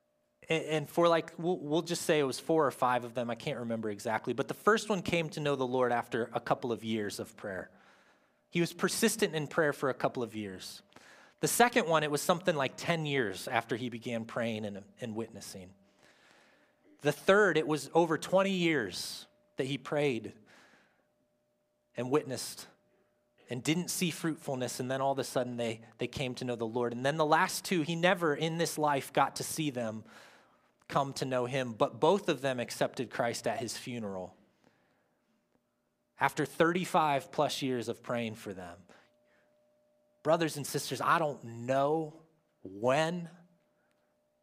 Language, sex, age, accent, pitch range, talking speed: English, male, 30-49, American, 110-155 Hz, 175 wpm